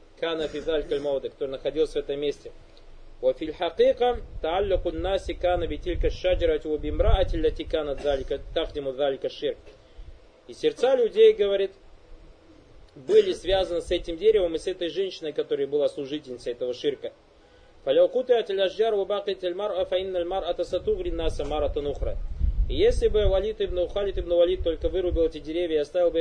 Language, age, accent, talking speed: Russian, 30-49, native, 85 wpm